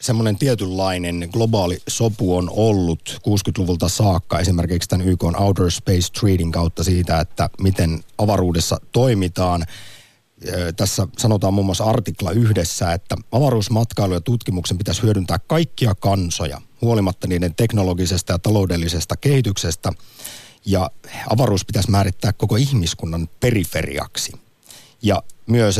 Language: Finnish